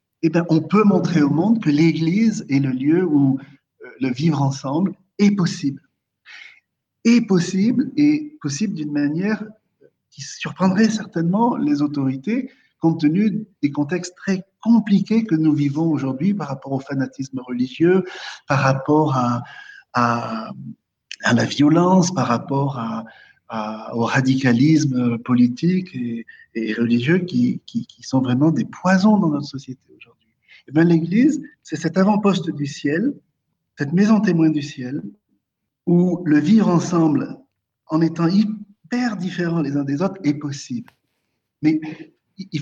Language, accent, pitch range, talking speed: French, French, 135-180 Hz, 140 wpm